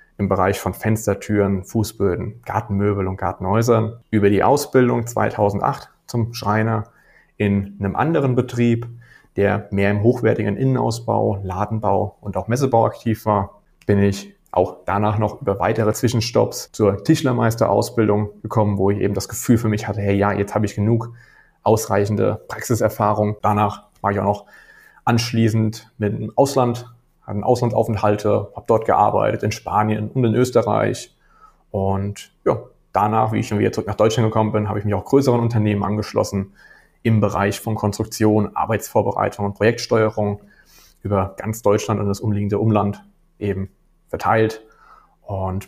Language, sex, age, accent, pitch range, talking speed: German, male, 30-49, German, 100-115 Hz, 145 wpm